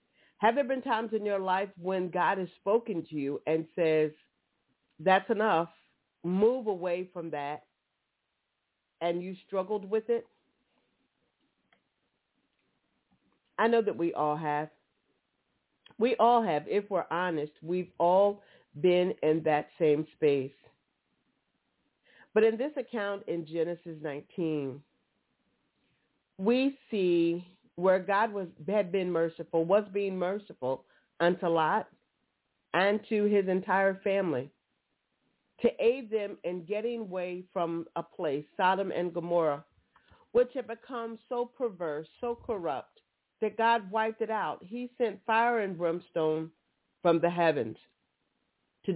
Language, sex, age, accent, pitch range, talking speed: English, female, 40-59, American, 165-220 Hz, 125 wpm